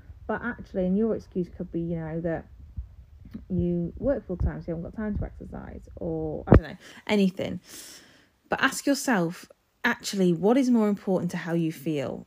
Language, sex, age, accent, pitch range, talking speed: English, female, 30-49, British, 165-205 Hz, 185 wpm